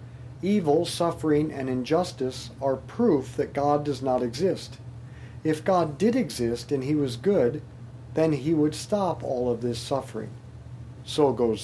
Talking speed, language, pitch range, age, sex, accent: 150 wpm, English, 120-155 Hz, 50-69, male, American